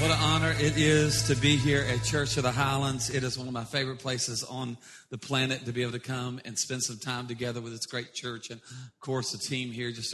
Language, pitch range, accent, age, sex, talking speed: English, 120-135 Hz, American, 40-59, male, 260 wpm